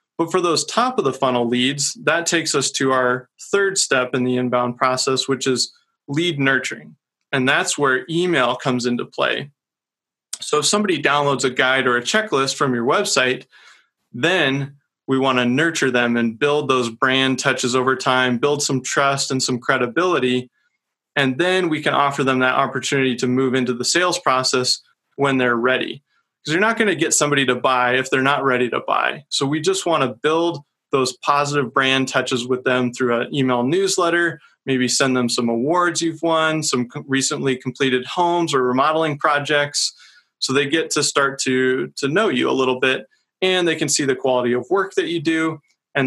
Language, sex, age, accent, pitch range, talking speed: English, male, 20-39, American, 130-155 Hz, 190 wpm